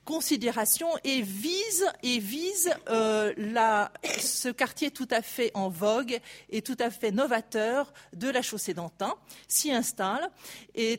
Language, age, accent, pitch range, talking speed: French, 40-59, French, 200-260 Hz, 140 wpm